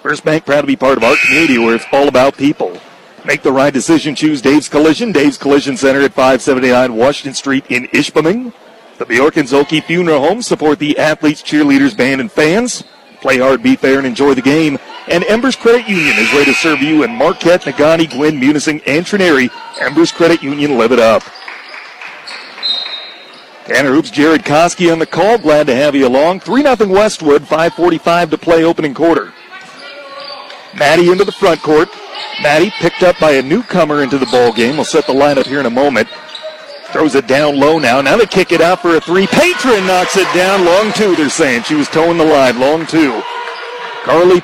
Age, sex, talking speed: 40-59, male, 195 wpm